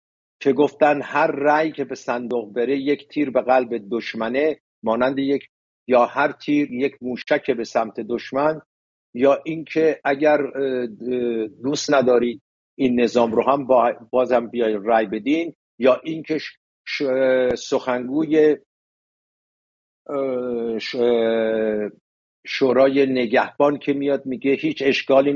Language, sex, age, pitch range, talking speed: English, male, 50-69, 120-150 Hz, 110 wpm